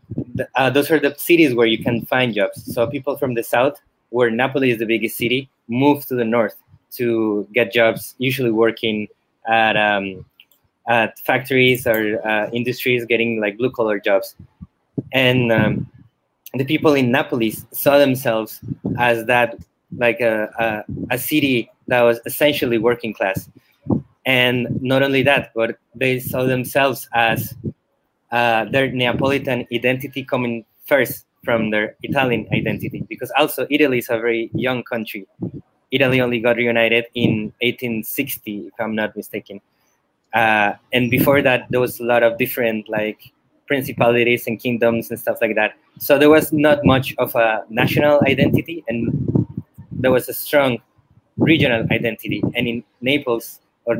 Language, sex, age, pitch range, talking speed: English, male, 20-39, 115-130 Hz, 150 wpm